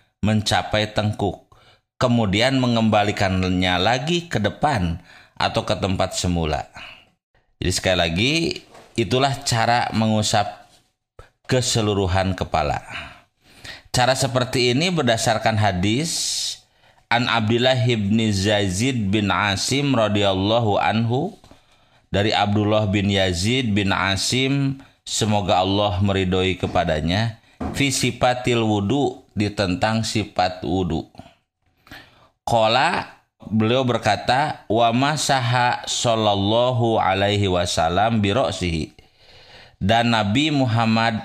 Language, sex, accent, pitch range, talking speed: Indonesian, male, native, 100-125 Hz, 85 wpm